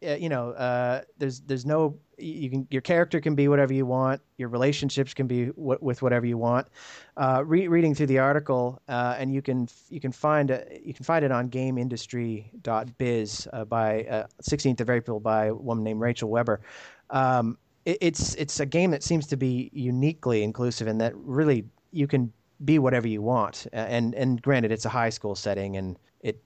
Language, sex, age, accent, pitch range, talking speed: English, male, 30-49, American, 115-145 Hz, 200 wpm